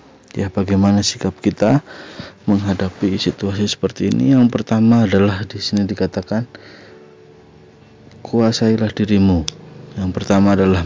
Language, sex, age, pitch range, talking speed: Indonesian, male, 20-39, 90-100 Hz, 105 wpm